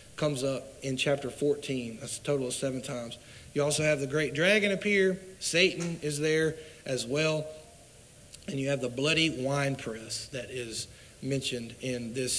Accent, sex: American, male